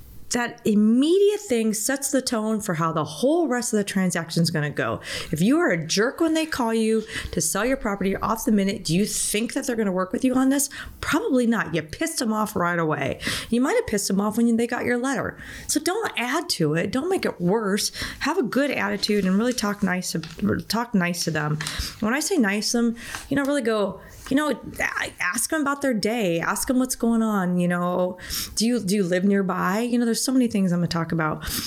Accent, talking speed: American, 230 wpm